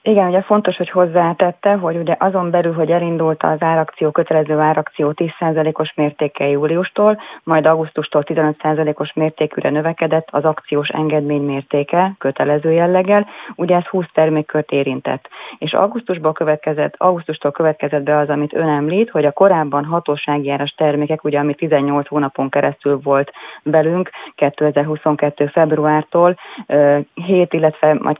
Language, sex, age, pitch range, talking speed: Hungarian, female, 30-49, 145-165 Hz, 130 wpm